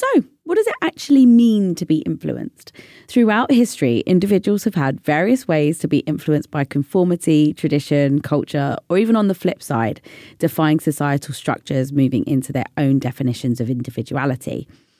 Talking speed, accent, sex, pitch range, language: 155 wpm, British, female, 140-195 Hz, English